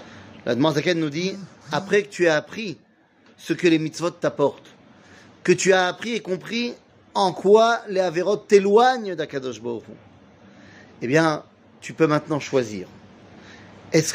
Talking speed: 150 wpm